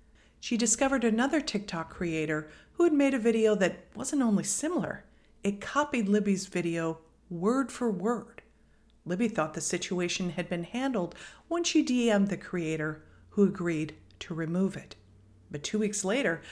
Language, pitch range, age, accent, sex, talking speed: English, 175-240 Hz, 50-69, American, female, 155 wpm